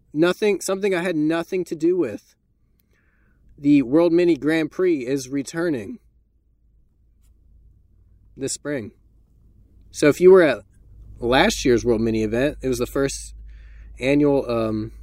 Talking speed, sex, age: 130 wpm, male, 20-39